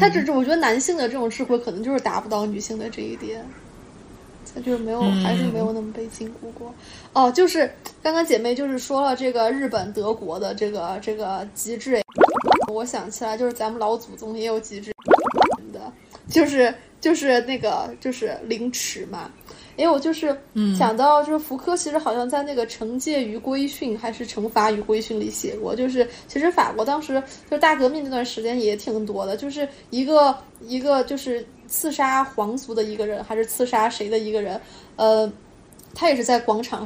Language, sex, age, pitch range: Chinese, female, 20-39, 220-275 Hz